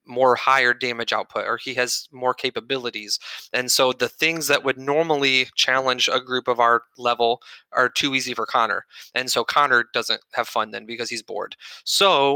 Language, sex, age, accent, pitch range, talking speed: English, male, 20-39, American, 125-140 Hz, 185 wpm